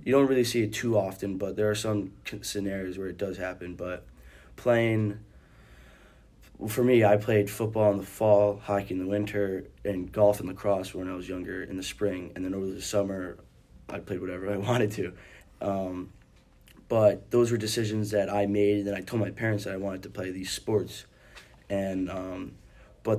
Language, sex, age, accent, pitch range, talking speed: English, male, 20-39, American, 95-105 Hz, 195 wpm